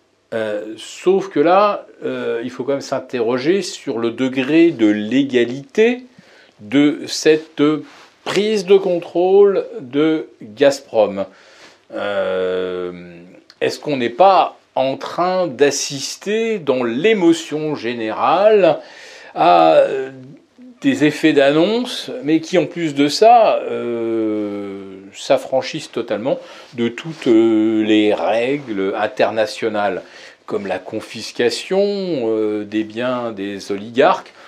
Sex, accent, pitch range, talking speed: male, French, 105-165 Hz, 100 wpm